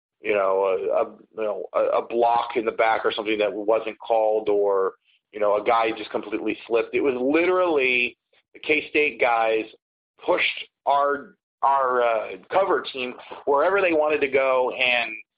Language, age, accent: English, 30-49, American